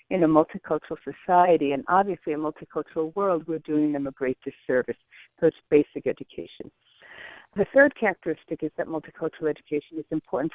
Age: 60-79